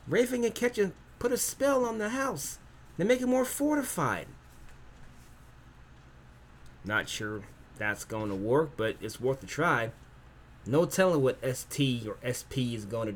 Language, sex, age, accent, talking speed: English, male, 30-49, American, 150 wpm